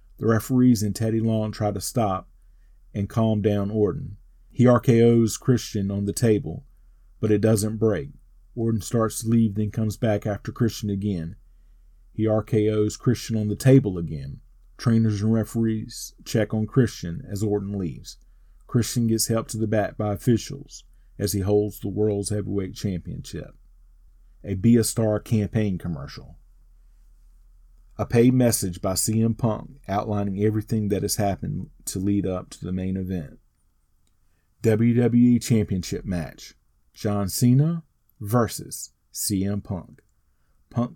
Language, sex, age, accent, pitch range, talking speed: English, male, 40-59, American, 100-115 Hz, 140 wpm